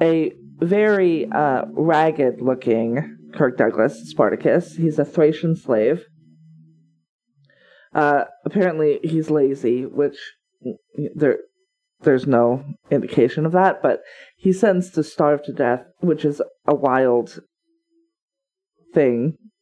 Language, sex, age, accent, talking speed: English, female, 40-59, American, 105 wpm